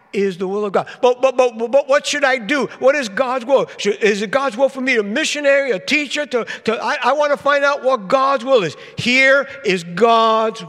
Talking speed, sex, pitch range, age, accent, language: 240 wpm, male, 200-265 Hz, 60-79, American, English